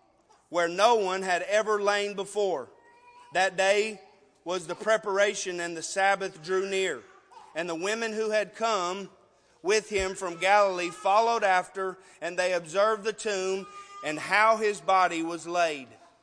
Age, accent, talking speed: 30-49, American, 150 wpm